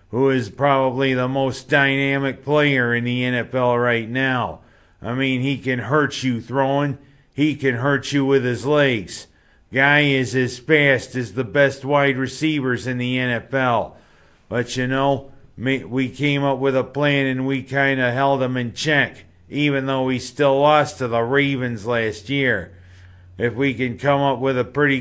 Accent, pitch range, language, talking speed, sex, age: American, 120-140 Hz, English, 175 wpm, male, 50-69